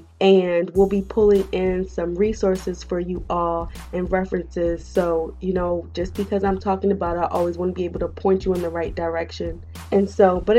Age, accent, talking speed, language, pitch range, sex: 20-39, American, 210 wpm, English, 165-195 Hz, female